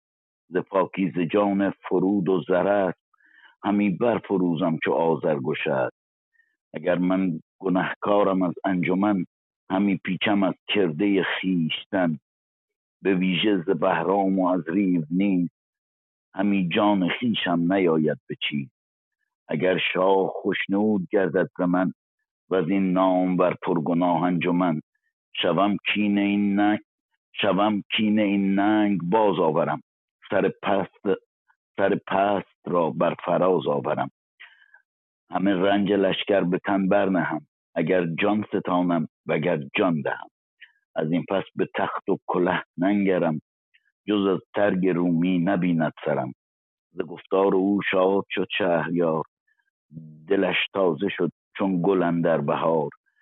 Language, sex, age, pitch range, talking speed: Persian, male, 60-79, 85-100 Hz, 115 wpm